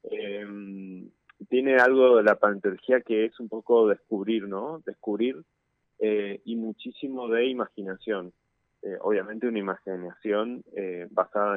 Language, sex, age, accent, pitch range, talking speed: Spanish, male, 20-39, Argentinian, 95-115 Hz, 125 wpm